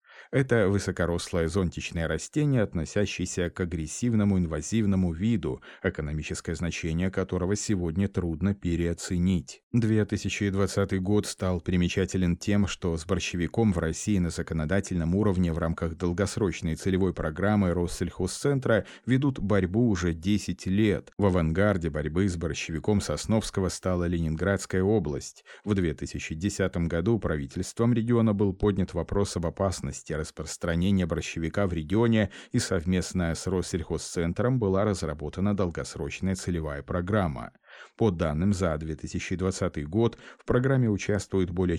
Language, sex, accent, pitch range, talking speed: Russian, male, native, 85-100 Hz, 115 wpm